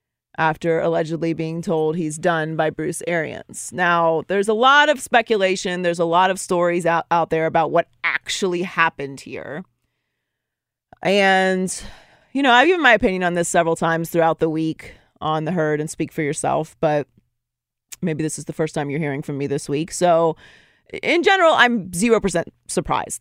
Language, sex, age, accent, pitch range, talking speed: English, female, 30-49, American, 160-200 Hz, 175 wpm